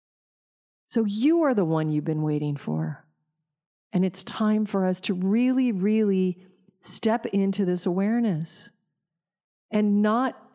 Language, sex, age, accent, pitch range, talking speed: English, female, 40-59, American, 170-200 Hz, 130 wpm